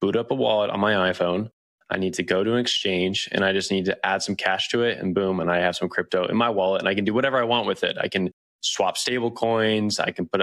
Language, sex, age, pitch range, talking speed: English, male, 20-39, 95-115 Hz, 295 wpm